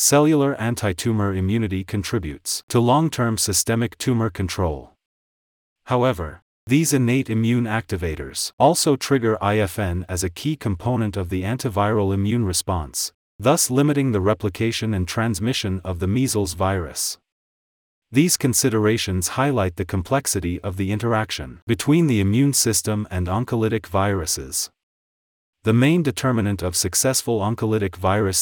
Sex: male